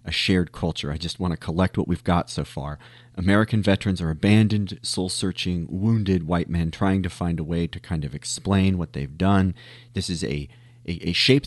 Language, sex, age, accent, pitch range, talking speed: English, male, 30-49, American, 90-115 Hz, 205 wpm